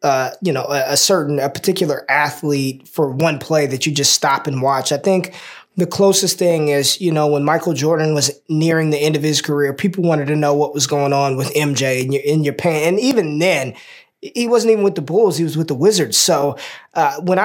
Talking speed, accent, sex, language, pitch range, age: 225 wpm, American, male, English, 145-195 Hz, 20-39